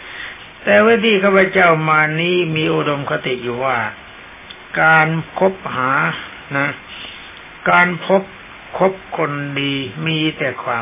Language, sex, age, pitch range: Thai, male, 60-79, 135-180 Hz